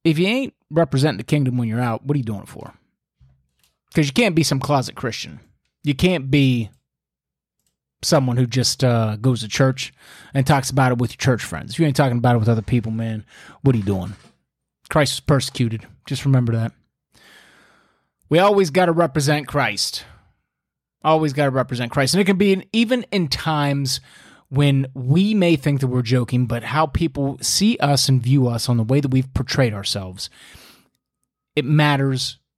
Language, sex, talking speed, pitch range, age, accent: English, male, 190 wpm, 115-145 Hz, 30-49, American